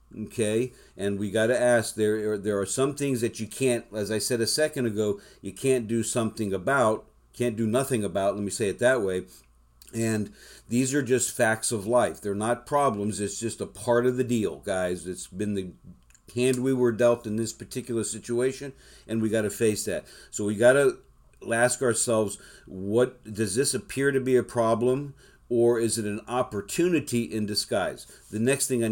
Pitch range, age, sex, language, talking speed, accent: 105-125 Hz, 50-69, male, English, 200 wpm, American